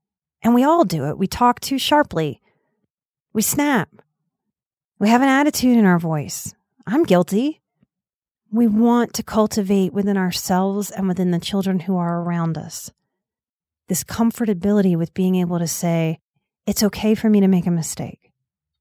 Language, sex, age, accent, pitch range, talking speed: English, female, 30-49, American, 170-225 Hz, 155 wpm